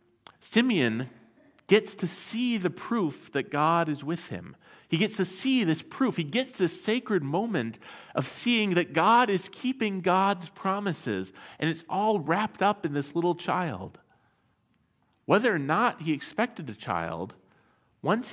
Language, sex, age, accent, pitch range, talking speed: English, male, 40-59, American, 140-205 Hz, 155 wpm